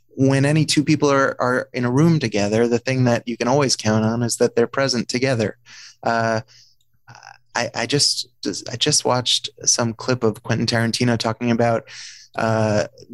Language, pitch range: English, 115-125 Hz